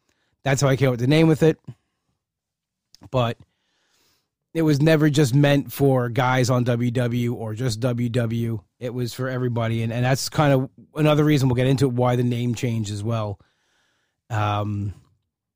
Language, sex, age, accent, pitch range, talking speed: English, male, 30-49, American, 115-140 Hz, 170 wpm